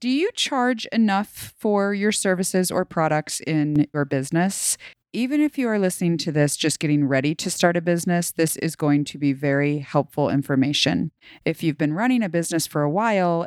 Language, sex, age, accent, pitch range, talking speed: English, female, 30-49, American, 145-185 Hz, 190 wpm